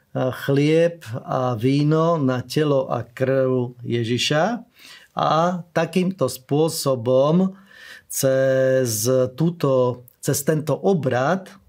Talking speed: 80 wpm